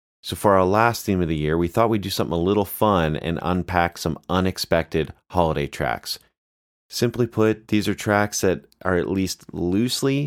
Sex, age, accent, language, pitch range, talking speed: male, 30-49, American, English, 80-105 Hz, 185 wpm